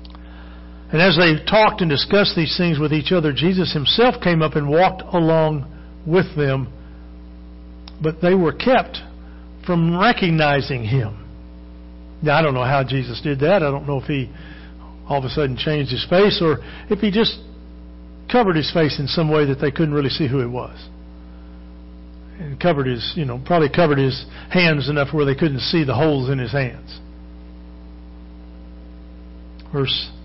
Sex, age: male, 50-69